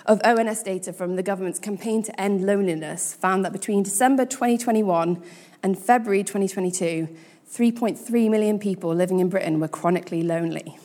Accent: British